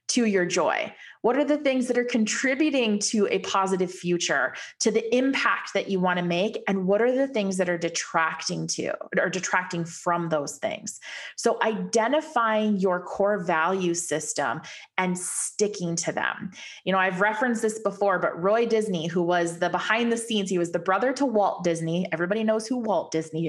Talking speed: 185 wpm